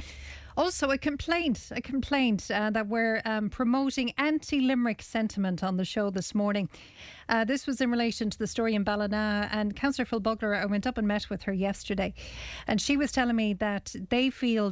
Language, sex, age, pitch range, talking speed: English, female, 40-59, 195-230 Hz, 195 wpm